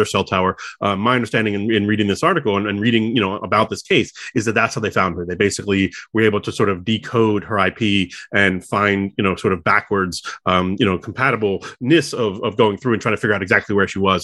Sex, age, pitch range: male, 30-49, 100-115 Hz